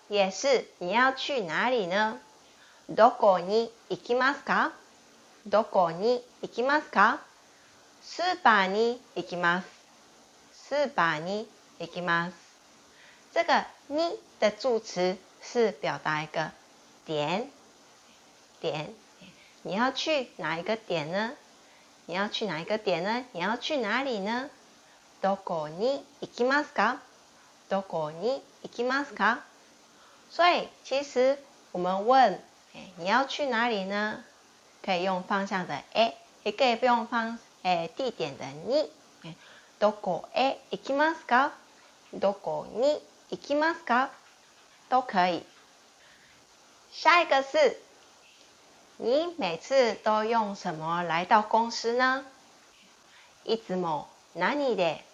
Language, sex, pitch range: Chinese, female, 185-260 Hz